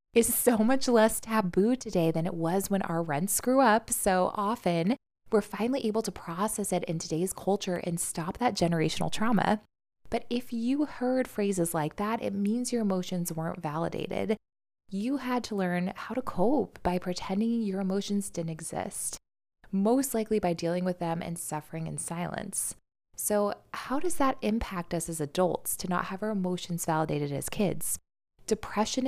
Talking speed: 170 wpm